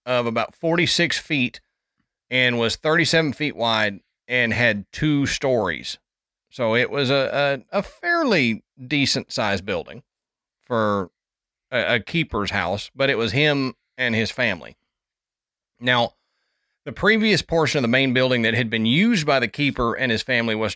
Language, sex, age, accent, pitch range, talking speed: English, male, 30-49, American, 115-145 Hz, 155 wpm